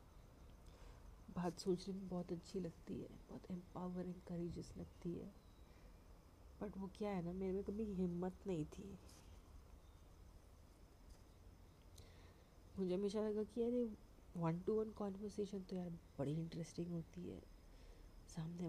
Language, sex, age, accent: Hindi, female, 30-49, native